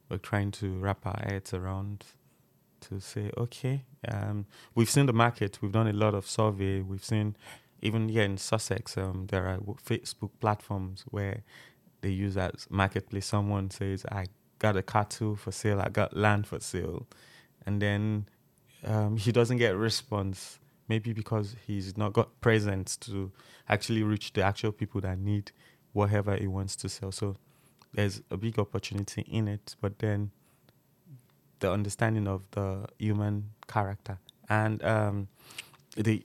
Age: 20-39